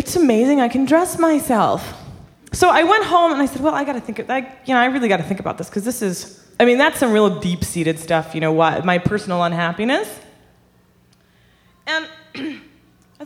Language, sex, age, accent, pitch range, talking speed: English, female, 20-39, American, 175-275 Hz, 205 wpm